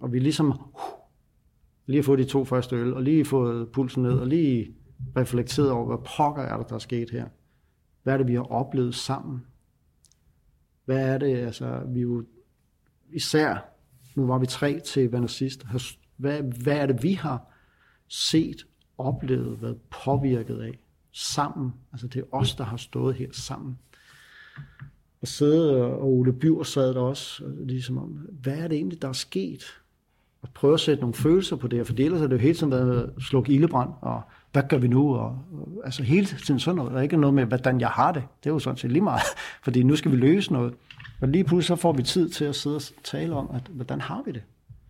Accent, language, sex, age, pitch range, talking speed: native, Danish, male, 60-79, 125-140 Hz, 210 wpm